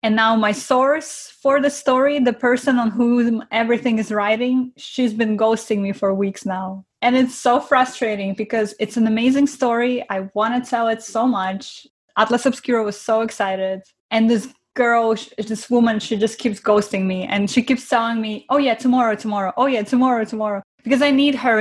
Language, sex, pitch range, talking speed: English, female, 210-255 Hz, 190 wpm